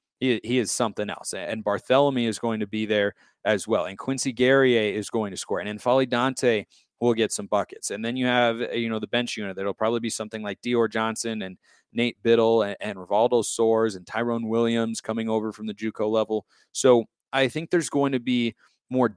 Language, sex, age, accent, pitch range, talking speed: English, male, 30-49, American, 110-125 Hz, 215 wpm